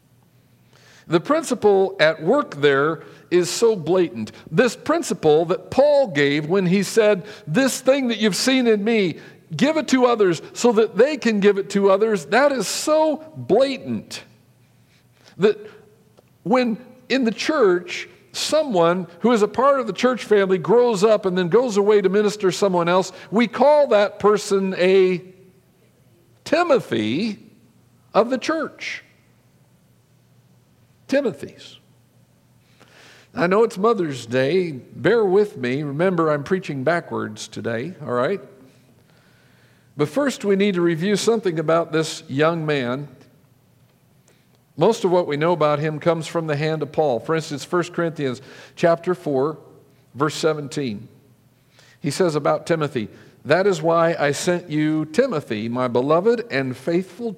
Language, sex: English, male